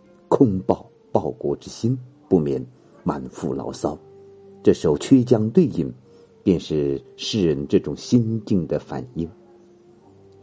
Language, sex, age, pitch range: Chinese, male, 50-69, 90-155 Hz